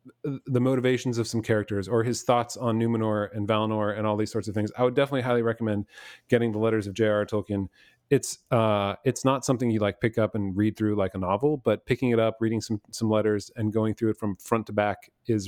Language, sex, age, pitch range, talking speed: English, male, 30-49, 105-120 Hz, 235 wpm